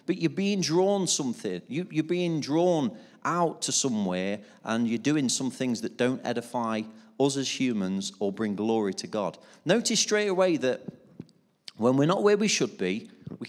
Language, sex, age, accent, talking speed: English, male, 40-59, British, 175 wpm